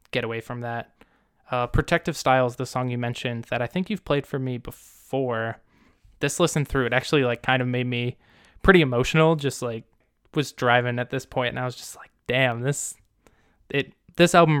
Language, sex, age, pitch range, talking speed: English, male, 20-39, 120-135 Hz, 195 wpm